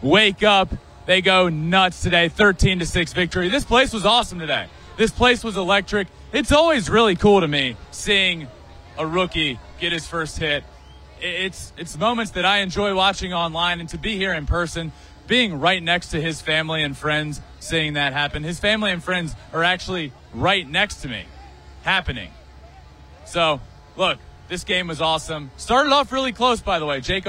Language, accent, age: English, American, 20-39